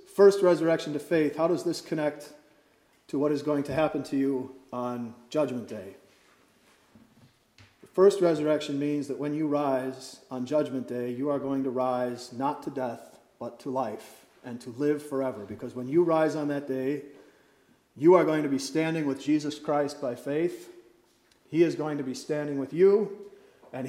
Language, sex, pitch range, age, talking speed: English, male, 135-170 Hz, 40-59, 180 wpm